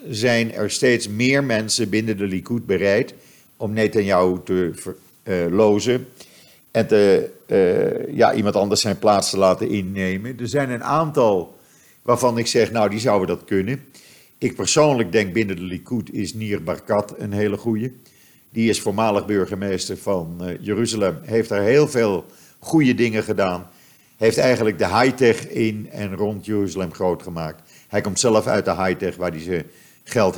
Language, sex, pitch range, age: Dutch, male, 95-115 Hz, 50-69